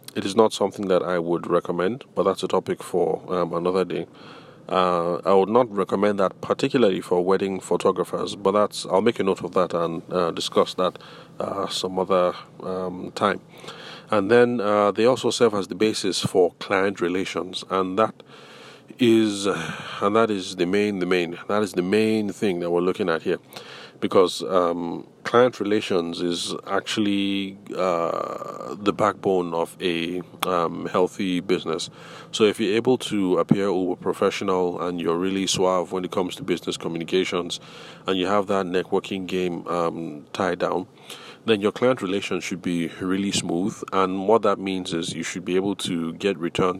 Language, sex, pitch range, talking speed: English, male, 90-100 Hz, 175 wpm